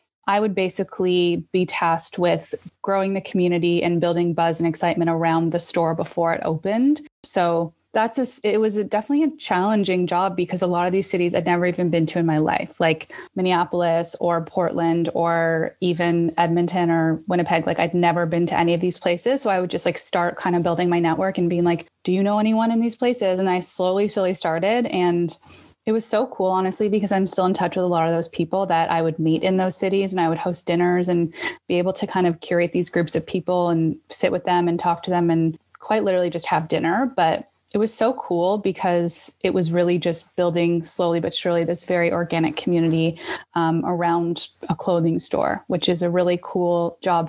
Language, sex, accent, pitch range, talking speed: English, female, American, 170-190 Hz, 215 wpm